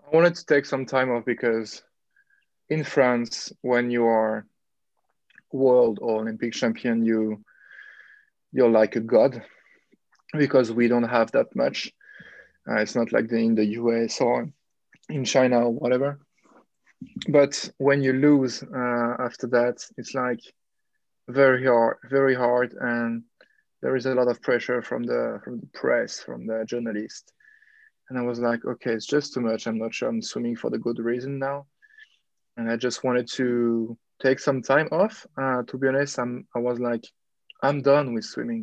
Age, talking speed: 20-39, 170 wpm